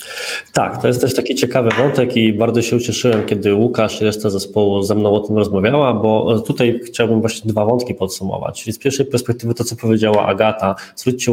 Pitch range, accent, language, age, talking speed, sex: 105-125 Hz, native, Polish, 20-39, 185 wpm, male